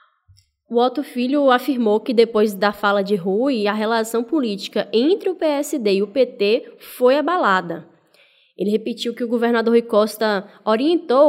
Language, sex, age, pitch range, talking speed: Portuguese, female, 10-29, 210-265 Hz, 155 wpm